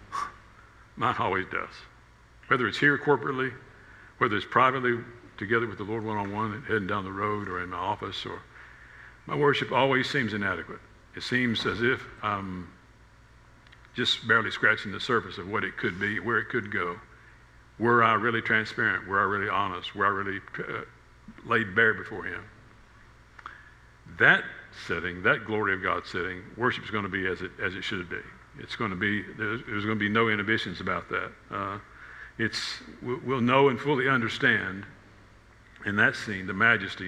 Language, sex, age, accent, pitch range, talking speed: English, male, 60-79, American, 105-125 Hz, 175 wpm